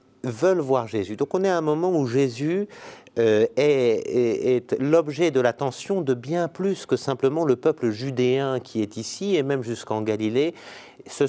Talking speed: 175 wpm